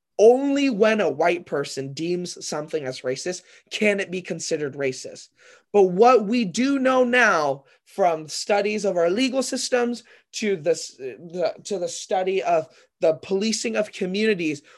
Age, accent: 20-39, American